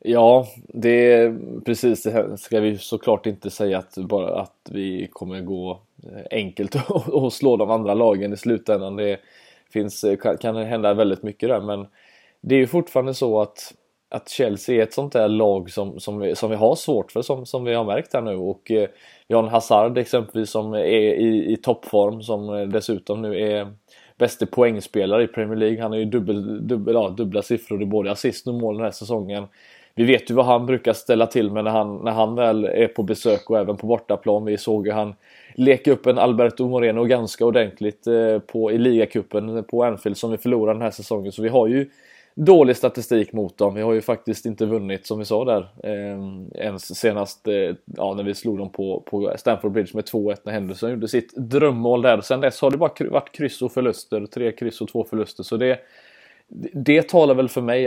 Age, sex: 20-39, male